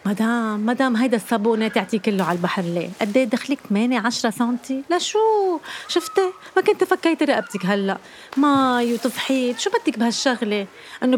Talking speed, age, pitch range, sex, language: 140 wpm, 30-49, 190-265 Hz, female, Arabic